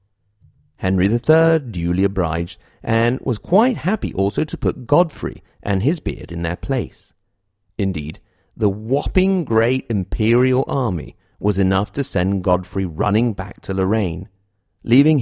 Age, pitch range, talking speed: 40-59, 95-115 Hz, 135 wpm